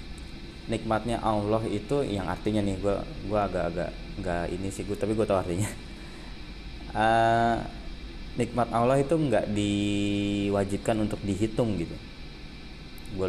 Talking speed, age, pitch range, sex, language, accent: 120 wpm, 20-39, 85-105 Hz, male, Indonesian, native